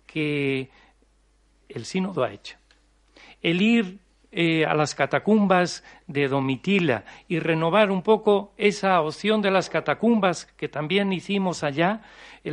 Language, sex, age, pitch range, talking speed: Spanish, male, 60-79, 155-205 Hz, 130 wpm